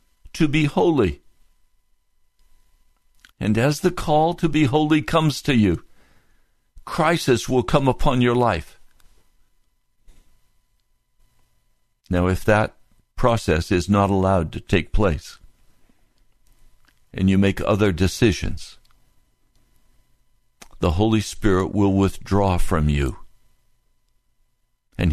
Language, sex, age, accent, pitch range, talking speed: English, male, 60-79, American, 95-140 Hz, 100 wpm